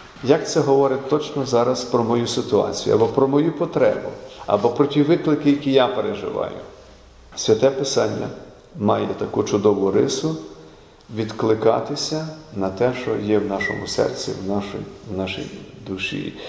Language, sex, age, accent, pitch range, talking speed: Ukrainian, male, 50-69, native, 120-145 Hz, 140 wpm